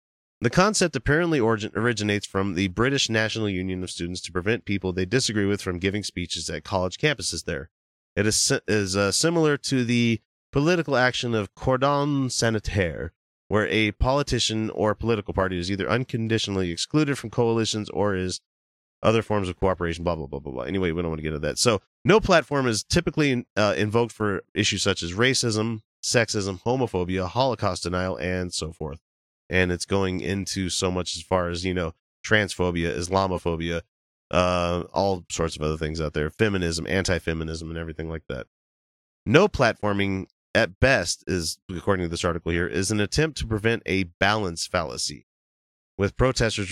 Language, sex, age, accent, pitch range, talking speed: English, male, 30-49, American, 85-110 Hz, 170 wpm